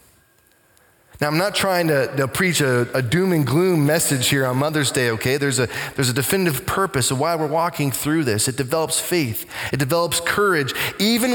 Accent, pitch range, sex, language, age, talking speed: American, 140-190 Hz, male, English, 20-39, 190 wpm